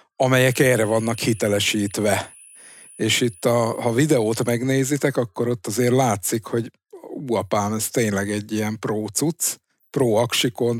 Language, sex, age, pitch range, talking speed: Hungarian, male, 50-69, 105-120 Hz, 120 wpm